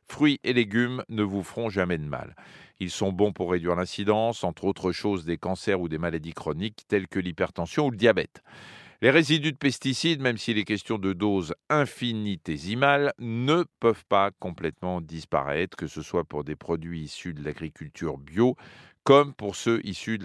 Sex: male